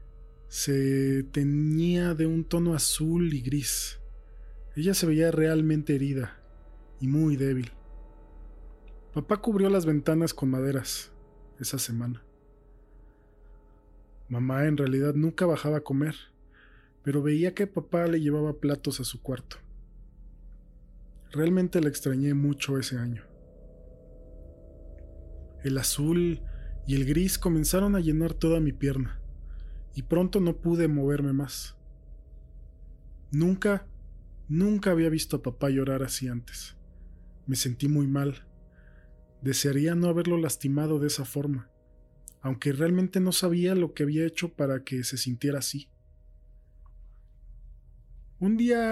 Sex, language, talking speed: male, Spanish, 120 wpm